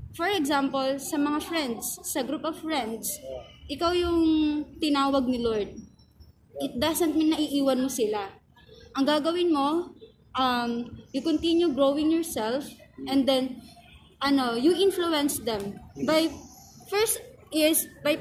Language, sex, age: Filipino, female, 20-39